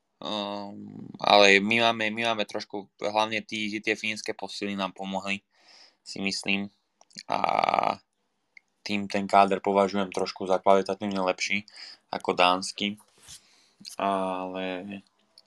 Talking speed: 110 wpm